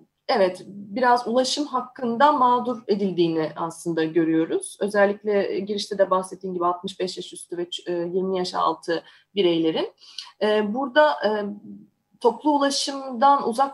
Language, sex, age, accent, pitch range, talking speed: Turkish, female, 30-49, native, 195-260 Hz, 110 wpm